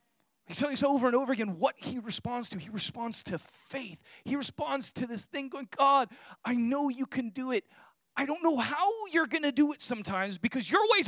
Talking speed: 220 wpm